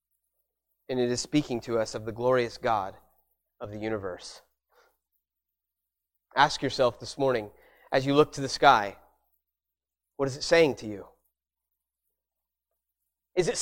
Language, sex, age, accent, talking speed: English, male, 30-49, American, 135 wpm